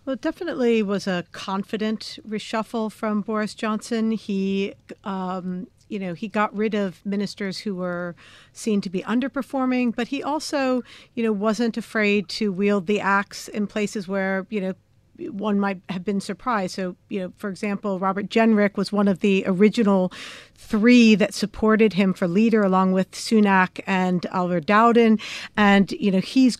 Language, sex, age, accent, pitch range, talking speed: English, female, 50-69, American, 195-225 Hz, 165 wpm